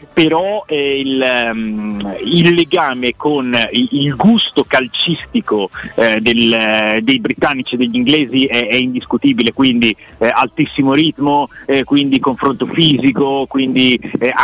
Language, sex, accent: Italian, male, native